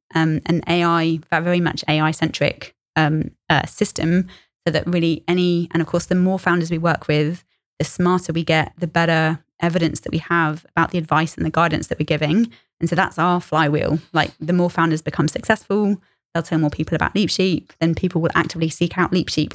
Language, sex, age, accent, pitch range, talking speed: English, female, 20-39, British, 160-175 Hz, 210 wpm